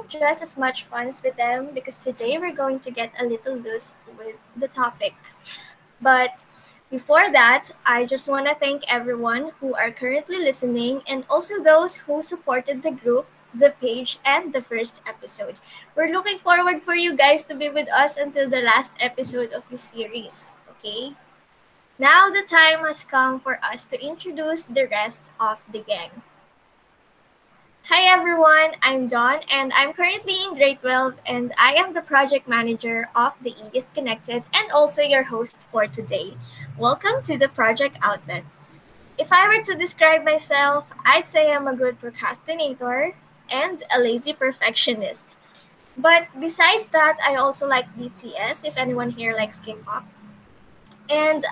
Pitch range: 240-310 Hz